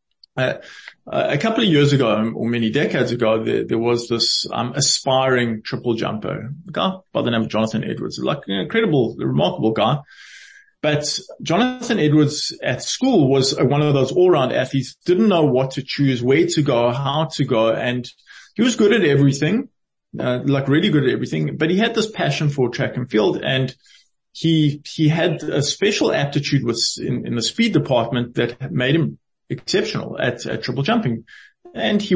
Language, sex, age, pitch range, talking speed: English, male, 20-39, 120-160 Hz, 180 wpm